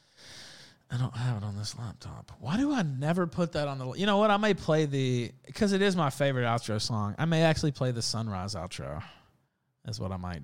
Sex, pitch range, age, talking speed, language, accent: male, 115-150 Hz, 20-39, 230 wpm, English, American